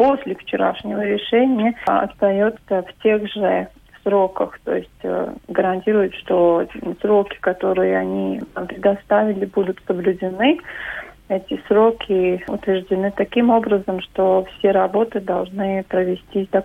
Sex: female